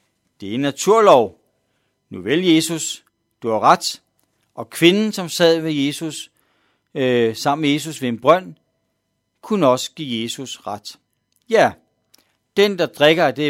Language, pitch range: Danish, 125-185 Hz